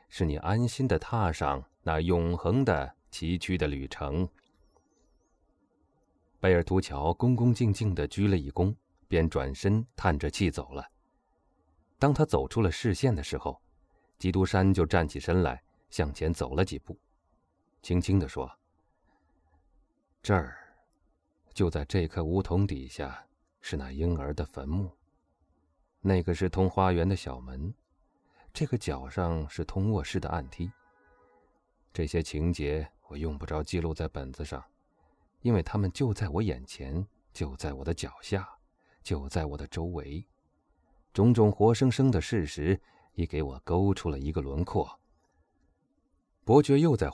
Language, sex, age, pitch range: Chinese, male, 30-49, 75-100 Hz